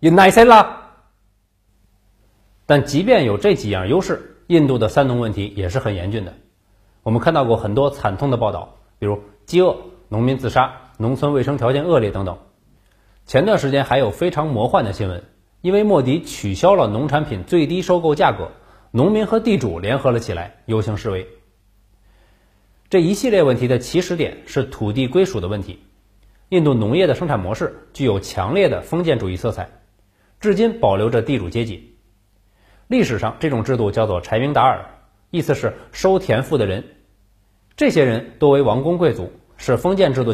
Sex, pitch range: male, 100-145 Hz